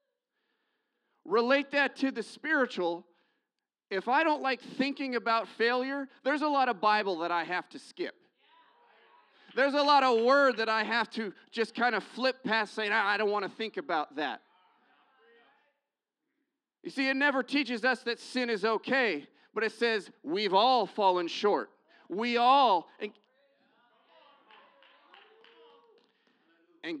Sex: male